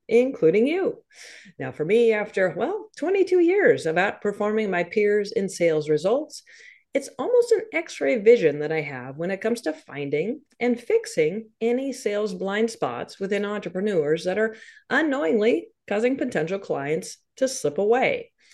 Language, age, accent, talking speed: English, 40-59, American, 150 wpm